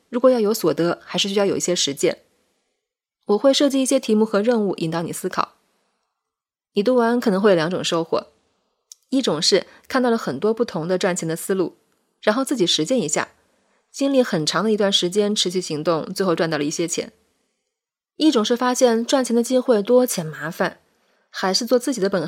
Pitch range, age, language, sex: 175-235 Hz, 20-39, Chinese, female